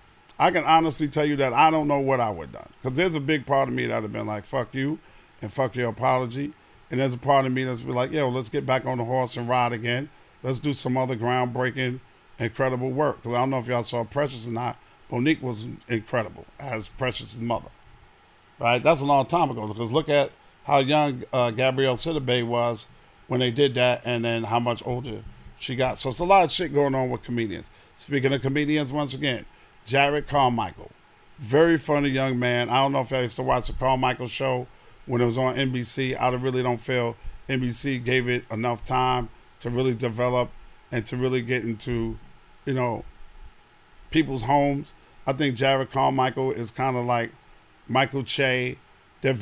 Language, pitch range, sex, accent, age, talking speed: English, 120-140 Hz, male, American, 50-69, 205 wpm